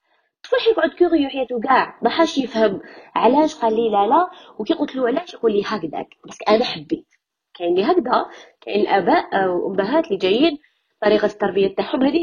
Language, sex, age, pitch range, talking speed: Arabic, female, 20-39, 195-330 Hz, 165 wpm